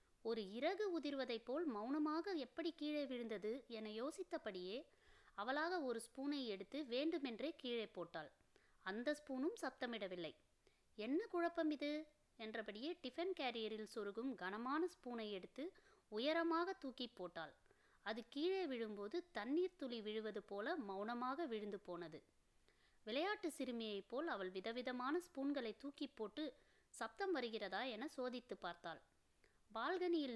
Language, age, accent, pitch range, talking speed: Tamil, 20-39, native, 220-305 Hz, 110 wpm